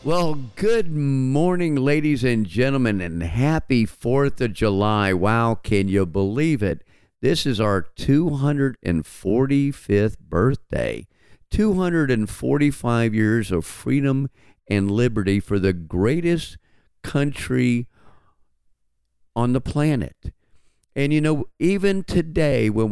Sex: male